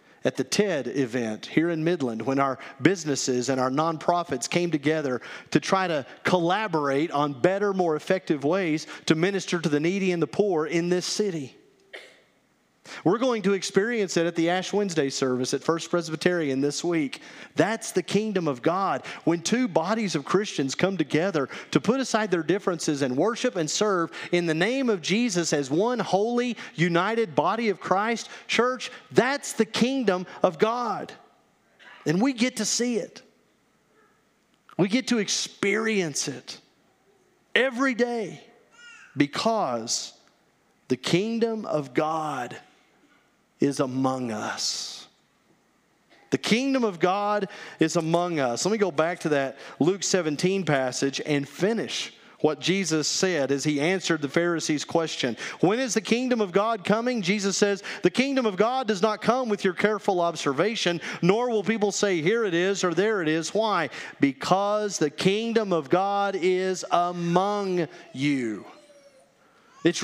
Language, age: English, 40-59